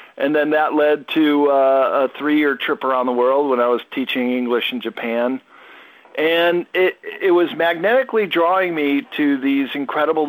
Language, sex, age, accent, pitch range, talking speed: English, male, 50-69, American, 120-155 Hz, 170 wpm